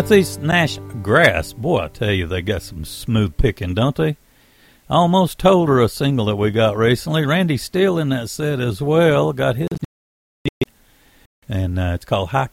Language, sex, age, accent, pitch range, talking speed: English, male, 60-79, American, 100-150 Hz, 185 wpm